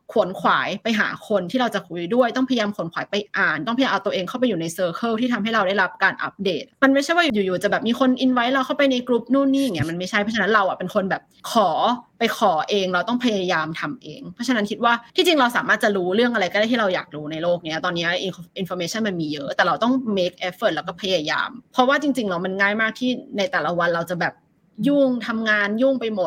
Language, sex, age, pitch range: Thai, female, 20-39, 180-235 Hz